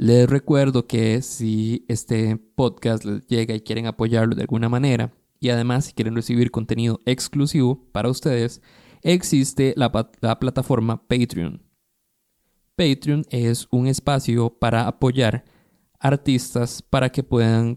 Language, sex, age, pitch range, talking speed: Spanish, male, 20-39, 115-130 Hz, 130 wpm